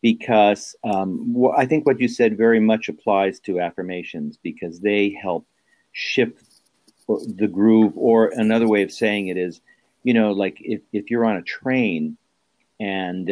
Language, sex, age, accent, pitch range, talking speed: English, male, 50-69, American, 95-120 Hz, 160 wpm